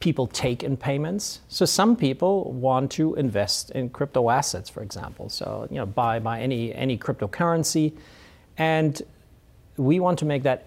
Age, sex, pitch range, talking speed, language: 40-59, male, 115-145 Hz, 165 wpm, English